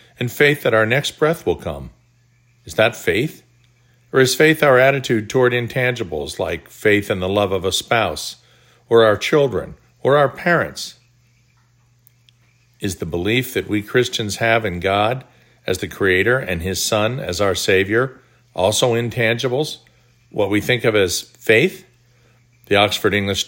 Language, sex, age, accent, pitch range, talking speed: English, male, 50-69, American, 110-130 Hz, 155 wpm